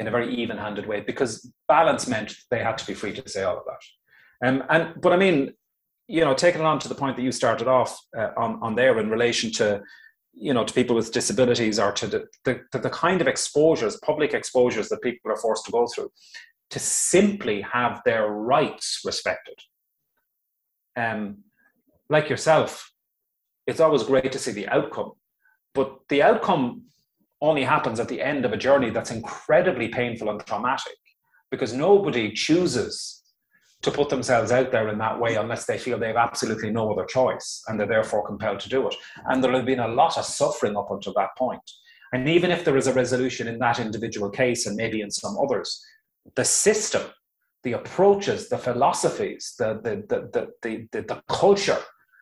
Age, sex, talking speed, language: 30-49, male, 190 wpm, English